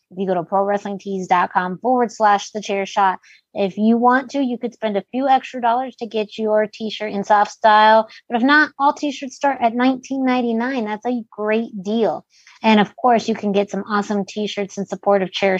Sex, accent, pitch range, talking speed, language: female, American, 190-230 Hz, 205 wpm, English